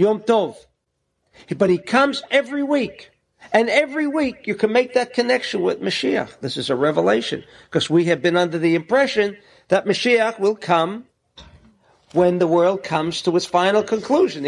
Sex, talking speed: male, 165 wpm